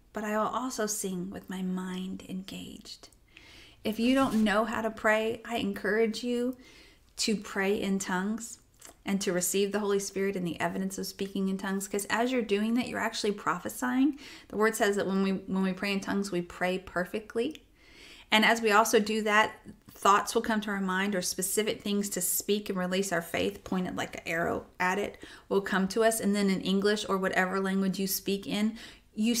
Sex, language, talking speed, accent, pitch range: female, English, 200 wpm, American, 190-220 Hz